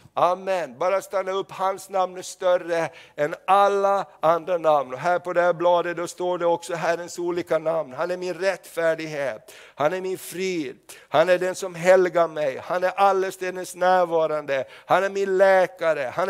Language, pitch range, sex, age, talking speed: Swedish, 175-195 Hz, male, 60-79, 175 wpm